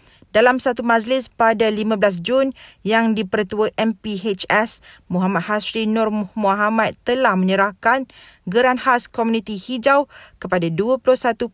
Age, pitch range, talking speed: 40-59, 200-250 Hz, 110 wpm